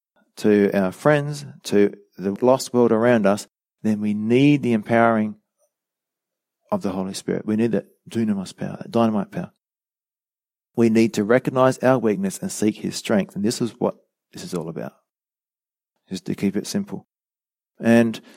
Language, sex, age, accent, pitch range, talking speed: English, male, 40-59, Australian, 105-130 Hz, 155 wpm